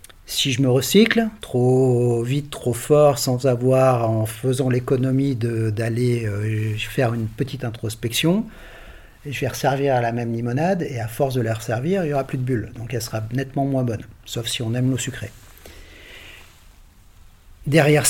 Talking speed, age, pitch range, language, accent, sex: 165 wpm, 40-59, 115-145 Hz, French, French, male